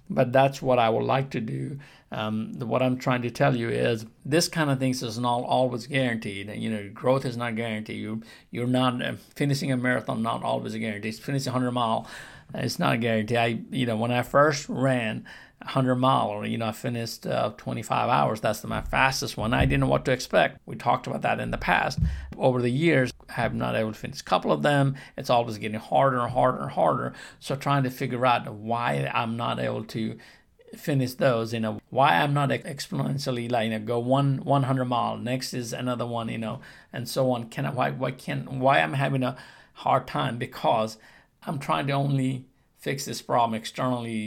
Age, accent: 50-69, American